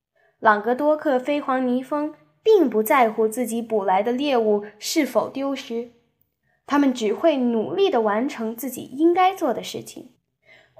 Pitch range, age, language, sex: 220-315 Hz, 10-29, Chinese, female